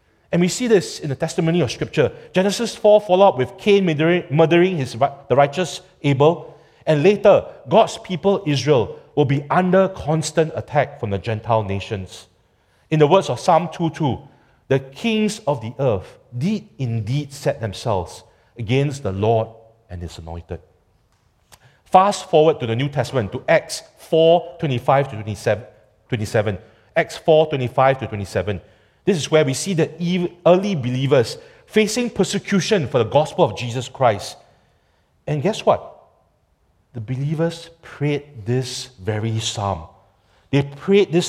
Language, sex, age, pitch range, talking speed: English, male, 40-59, 115-175 Hz, 140 wpm